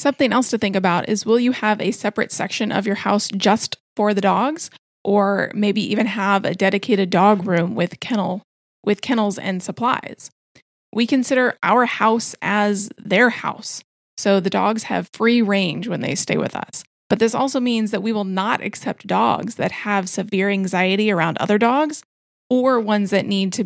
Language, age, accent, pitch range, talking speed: English, 30-49, American, 190-230 Hz, 185 wpm